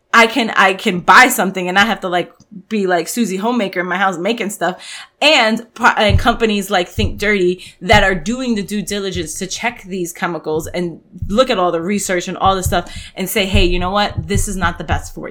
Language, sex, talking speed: English, female, 225 wpm